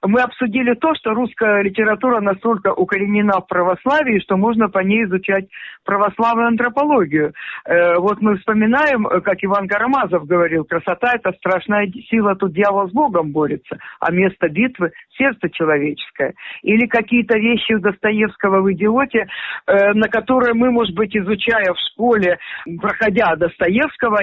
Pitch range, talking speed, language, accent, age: 190-230 Hz, 135 wpm, Russian, native, 50-69